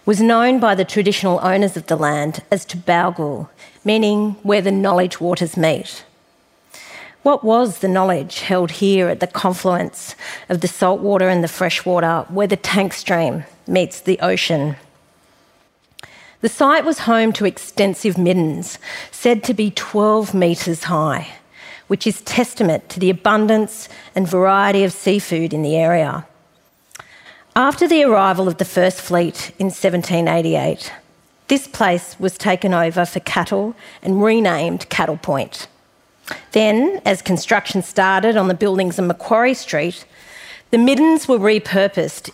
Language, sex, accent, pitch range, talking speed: English, female, Australian, 175-215 Hz, 140 wpm